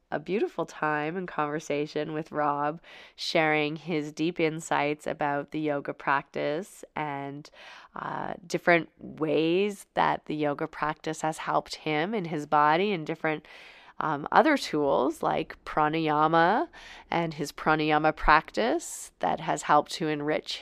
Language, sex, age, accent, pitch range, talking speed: English, female, 20-39, American, 150-170 Hz, 130 wpm